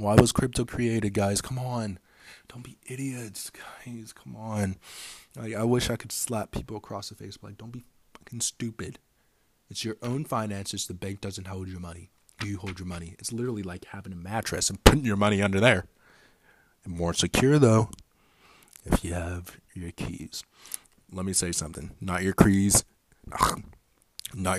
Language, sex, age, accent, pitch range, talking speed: English, male, 20-39, American, 95-115 Hz, 165 wpm